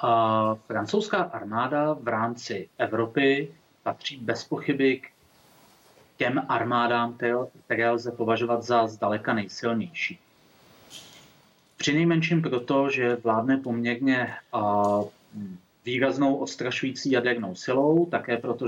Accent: native